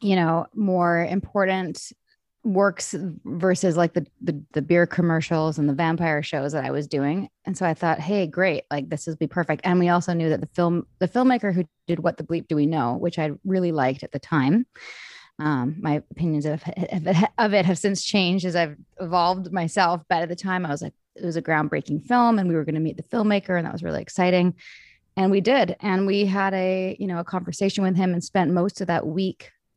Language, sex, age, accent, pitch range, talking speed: English, female, 20-39, American, 155-190 Hz, 225 wpm